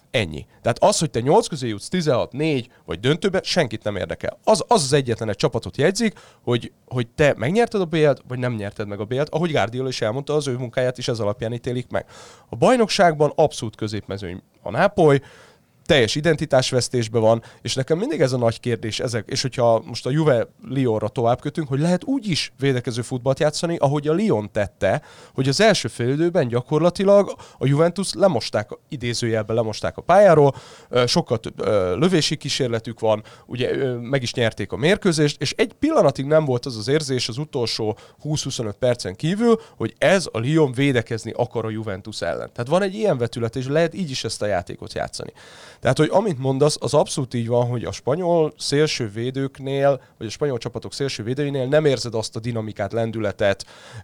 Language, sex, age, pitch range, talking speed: Hungarian, male, 30-49, 115-155 Hz, 180 wpm